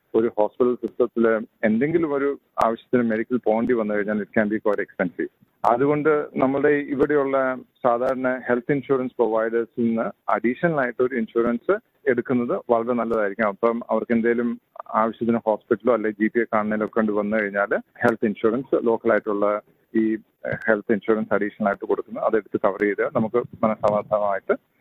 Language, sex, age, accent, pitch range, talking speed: Malayalam, male, 40-59, native, 115-135 Hz, 145 wpm